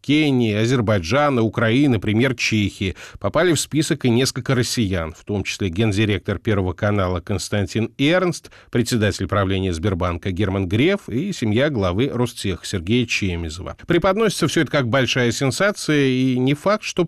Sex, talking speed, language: male, 140 wpm, Russian